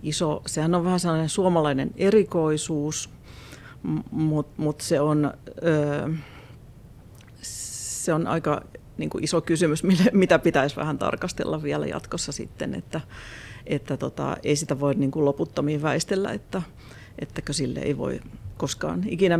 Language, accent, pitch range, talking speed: Finnish, native, 135-175 Hz, 125 wpm